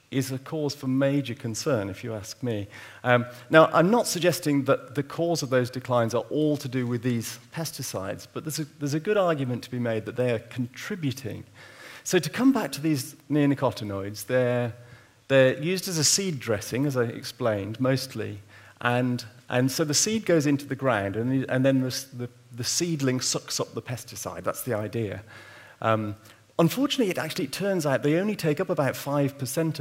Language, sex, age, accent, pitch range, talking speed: English, male, 40-59, British, 120-145 Hz, 185 wpm